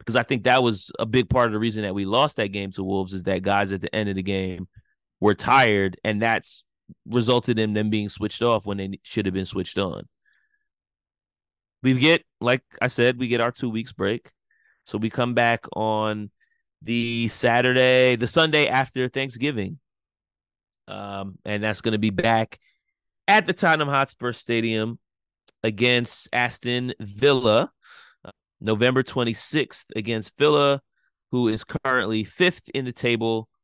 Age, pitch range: 30-49, 100-125 Hz